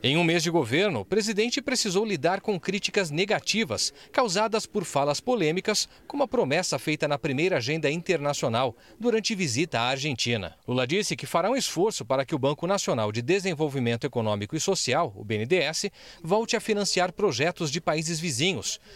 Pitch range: 140-205 Hz